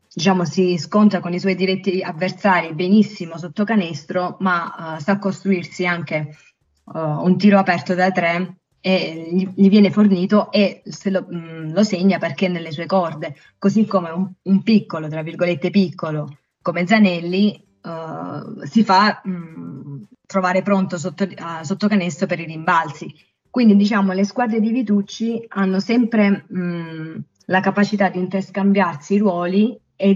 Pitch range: 165-200 Hz